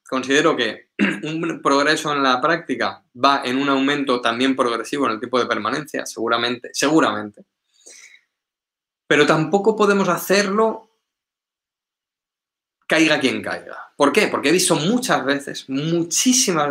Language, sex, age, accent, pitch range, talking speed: Spanish, male, 20-39, Spanish, 125-175 Hz, 125 wpm